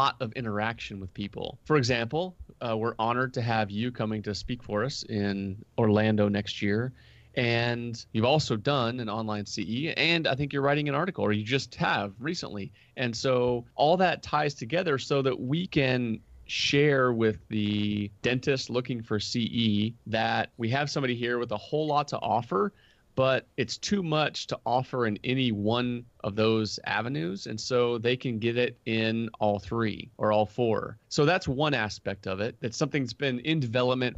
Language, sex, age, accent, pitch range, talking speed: English, male, 30-49, American, 110-135 Hz, 185 wpm